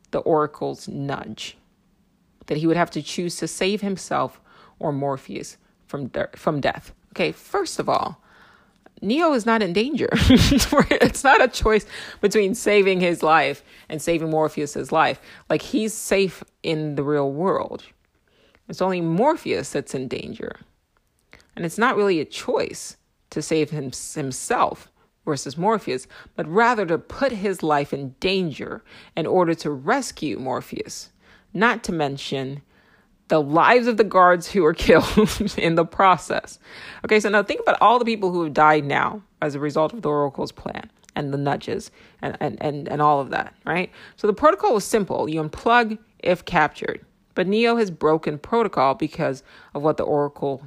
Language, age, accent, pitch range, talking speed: English, 30-49, American, 150-210 Hz, 165 wpm